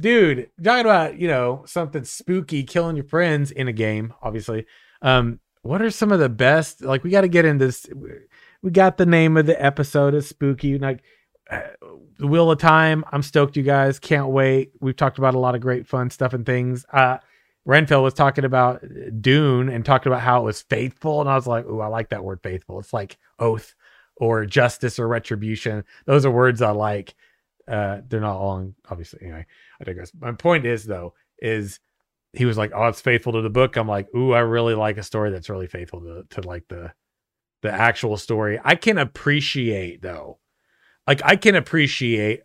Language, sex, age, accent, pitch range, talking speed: English, male, 30-49, American, 110-145 Hz, 200 wpm